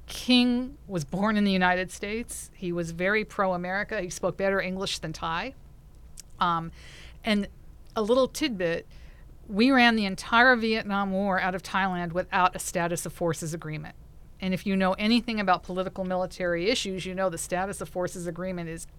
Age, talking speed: 50-69, 170 wpm